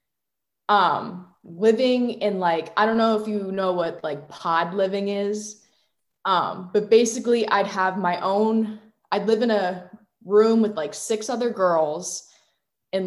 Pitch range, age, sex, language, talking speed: 170-215 Hz, 20-39, female, English, 150 wpm